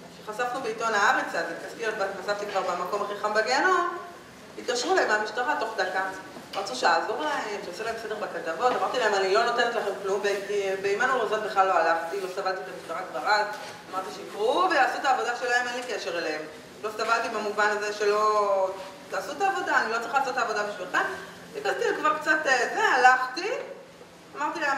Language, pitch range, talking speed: Hebrew, 205-330 Hz, 160 wpm